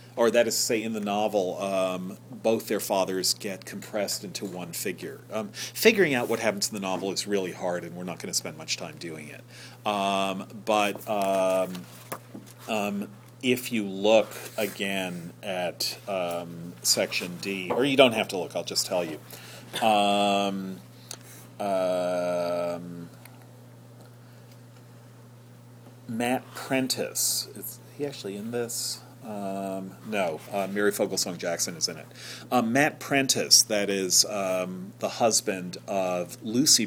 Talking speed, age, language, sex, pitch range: 145 wpm, 40-59, English, male, 95-120 Hz